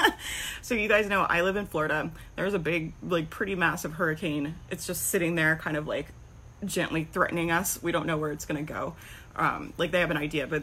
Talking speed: 220 wpm